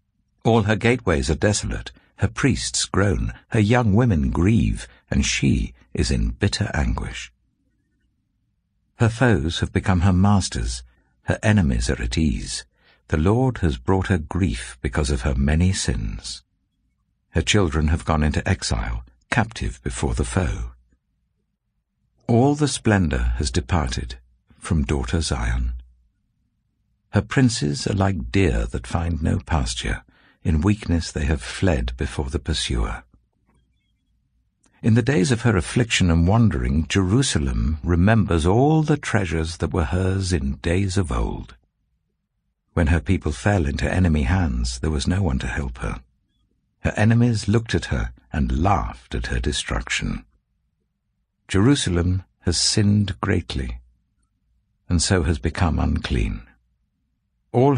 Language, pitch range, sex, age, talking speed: English, 75-105 Hz, male, 60-79, 135 wpm